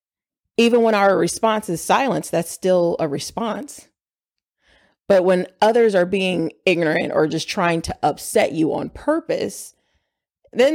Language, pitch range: English, 180-225 Hz